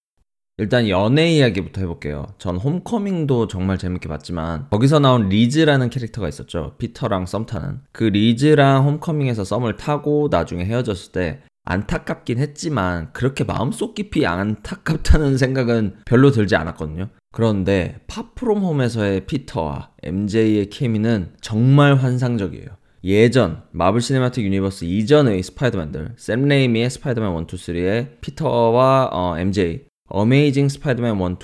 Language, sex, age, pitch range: Korean, male, 20-39, 95-140 Hz